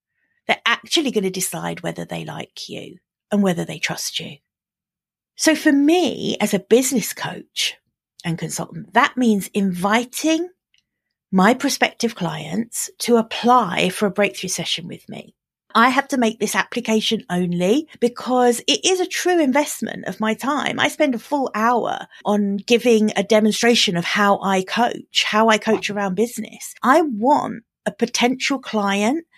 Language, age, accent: English, 40-59, British